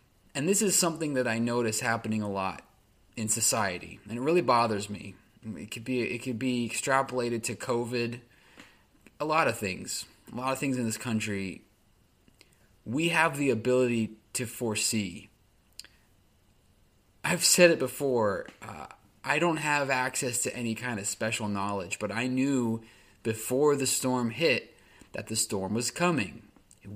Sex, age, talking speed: male, 20-39, 160 wpm